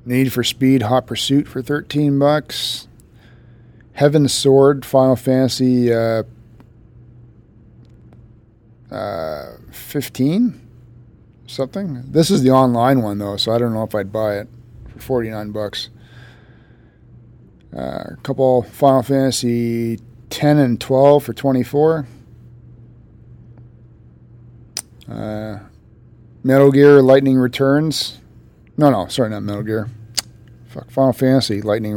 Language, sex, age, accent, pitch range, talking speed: English, male, 40-59, American, 115-130 Hz, 115 wpm